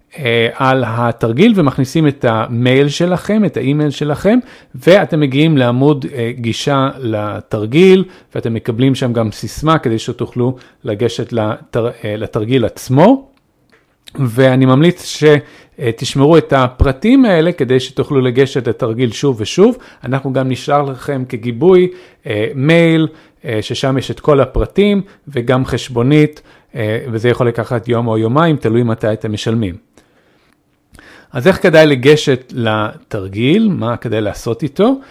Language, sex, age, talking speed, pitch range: Hebrew, male, 40-59, 120 wpm, 120-160 Hz